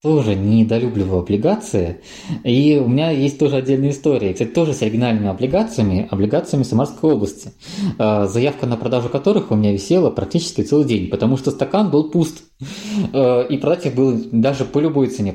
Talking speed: 160 wpm